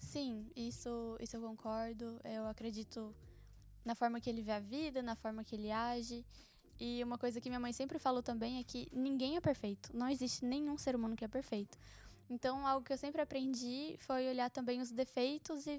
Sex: female